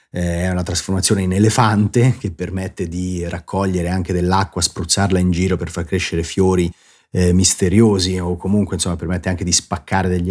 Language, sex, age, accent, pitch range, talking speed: Italian, male, 30-49, native, 90-120 Hz, 165 wpm